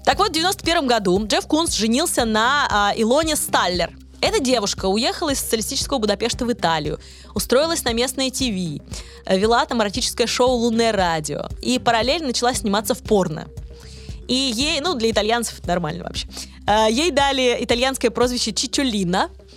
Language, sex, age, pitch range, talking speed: Russian, female, 20-39, 180-255 Hz, 145 wpm